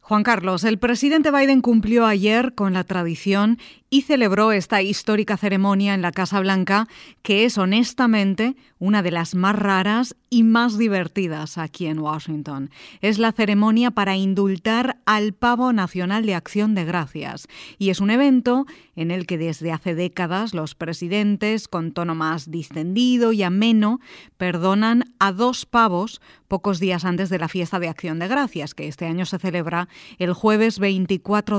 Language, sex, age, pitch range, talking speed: Spanish, female, 30-49, 175-230 Hz, 160 wpm